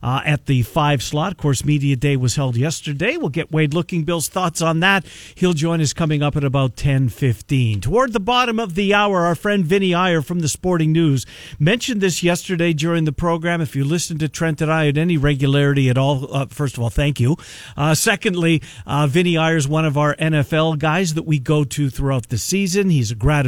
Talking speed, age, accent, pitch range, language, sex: 220 wpm, 50-69, American, 135-175 Hz, English, male